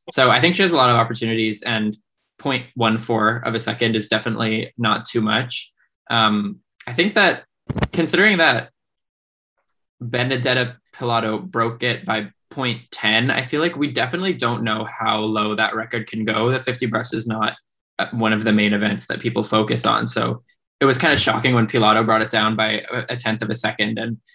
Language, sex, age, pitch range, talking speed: English, male, 10-29, 110-120 Hz, 185 wpm